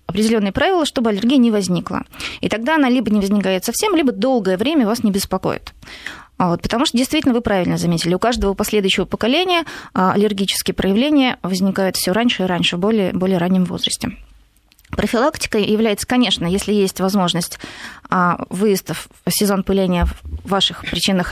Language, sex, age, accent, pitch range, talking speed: Russian, female, 20-39, native, 195-255 Hz, 150 wpm